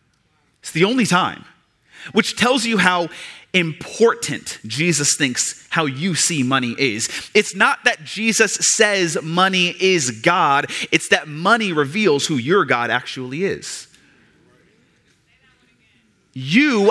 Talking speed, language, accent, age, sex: 120 wpm, English, American, 30-49, male